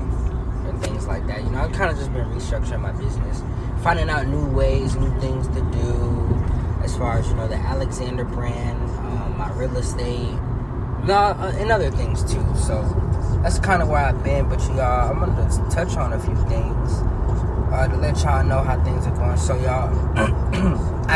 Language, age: English, 20-39